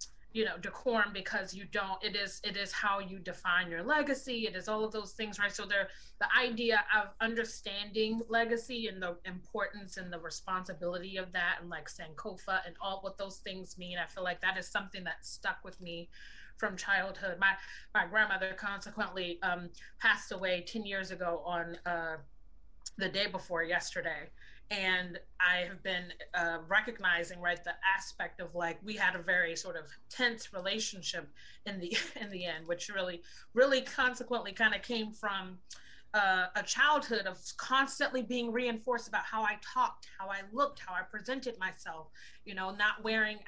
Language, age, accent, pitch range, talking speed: English, 30-49, American, 180-220 Hz, 175 wpm